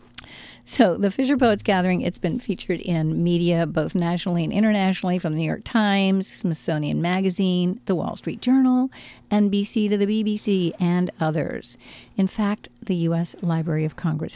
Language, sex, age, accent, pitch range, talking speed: English, female, 50-69, American, 165-205 Hz, 160 wpm